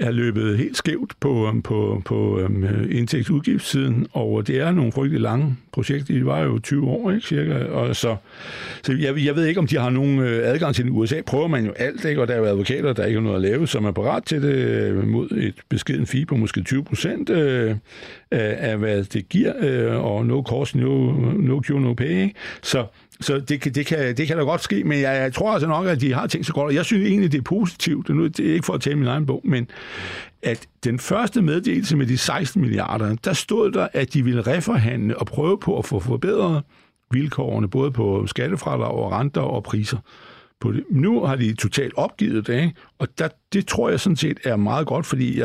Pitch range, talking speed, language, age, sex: 110-145 Hz, 220 wpm, Danish, 60-79, male